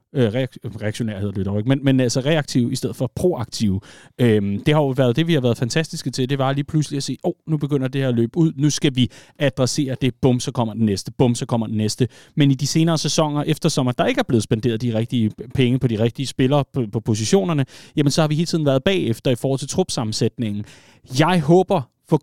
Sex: male